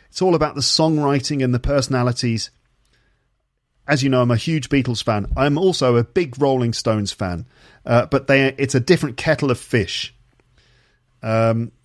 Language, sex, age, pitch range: English, male, 40-59, 115-145 Hz